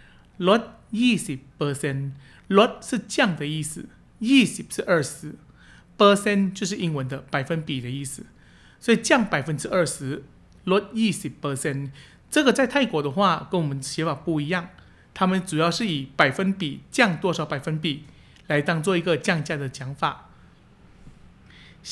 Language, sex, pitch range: Chinese, male, 145-200 Hz